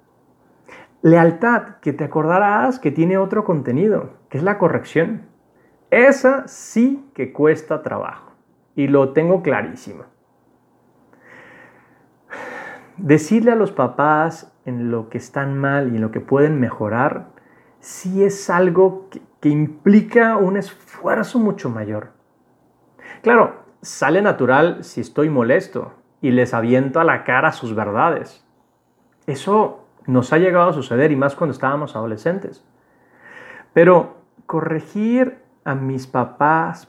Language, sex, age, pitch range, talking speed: Spanish, male, 40-59, 140-205 Hz, 125 wpm